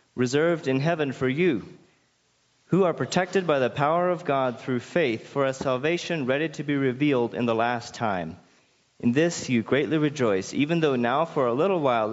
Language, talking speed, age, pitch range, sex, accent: English, 190 wpm, 30-49, 120-150 Hz, male, American